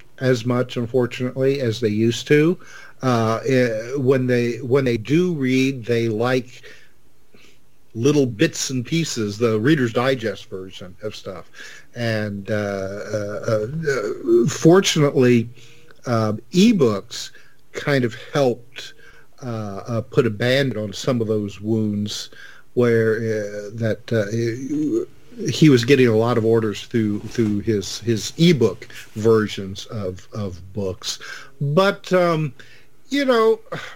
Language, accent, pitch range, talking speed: English, American, 110-155 Hz, 125 wpm